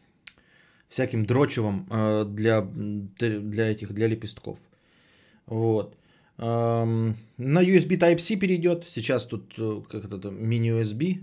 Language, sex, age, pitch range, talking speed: Bulgarian, male, 20-39, 105-140 Hz, 90 wpm